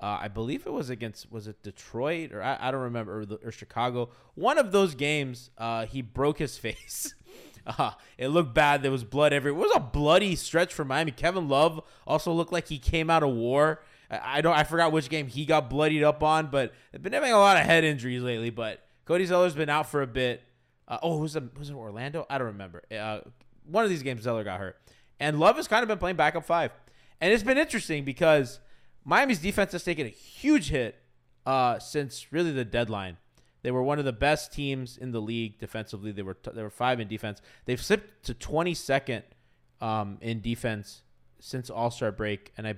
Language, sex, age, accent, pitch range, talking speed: English, male, 20-39, American, 115-155 Hz, 215 wpm